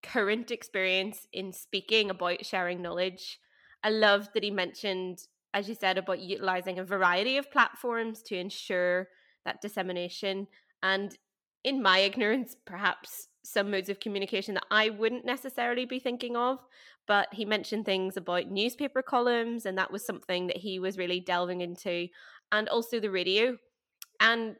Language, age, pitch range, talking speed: English, 20-39, 185-220 Hz, 155 wpm